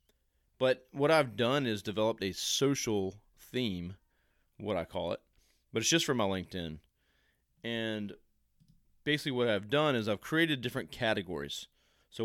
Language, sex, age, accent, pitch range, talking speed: English, male, 30-49, American, 95-125 Hz, 145 wpm